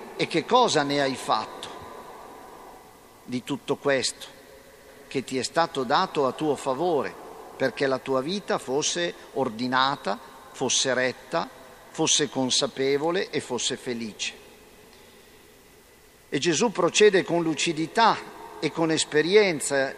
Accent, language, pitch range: native, Italian, 140-180 Hz